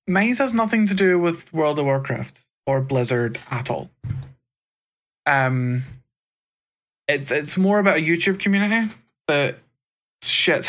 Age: 20-39